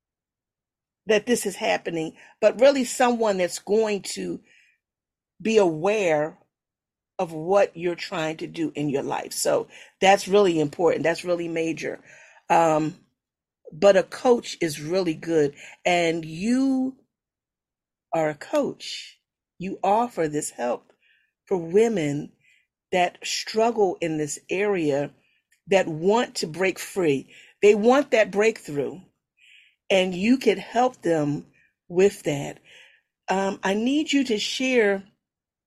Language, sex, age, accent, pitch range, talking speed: English, female, 40-59, American, 165-230 Hz, 125 wpm